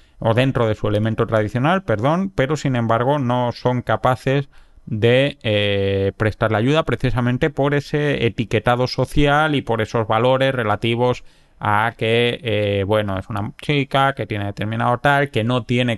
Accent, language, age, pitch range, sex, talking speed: Spanish, Spanish, 30-49, 110-130 Hz, male, 160 wpm